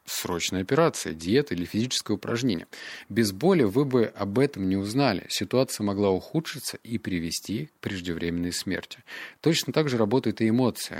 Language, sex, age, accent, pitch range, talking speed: Russian, male, 30-49, native, 90-115 Hz, 155 wpm